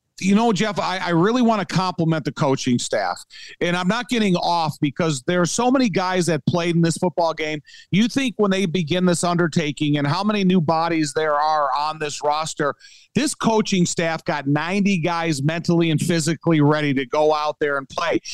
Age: 50-69